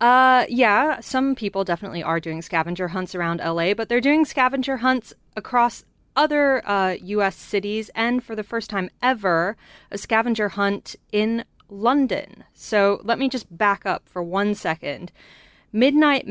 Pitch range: 175-215 Hz